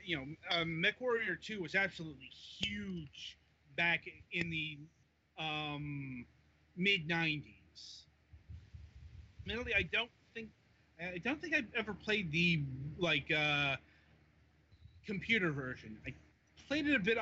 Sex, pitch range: male, 130-180 Hz